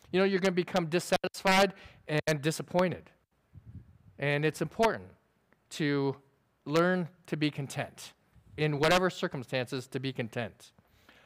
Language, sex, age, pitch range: English, male, 40-59, 140-180 Hz